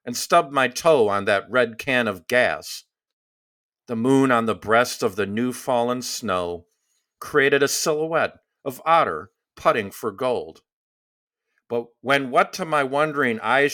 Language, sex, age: English, male, 50-69